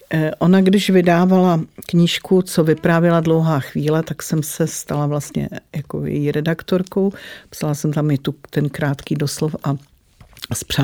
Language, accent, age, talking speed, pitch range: Czech, native, 50-69, 145 wpm, 150-170 Hz